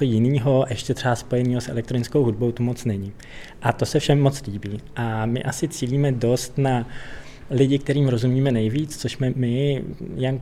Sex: male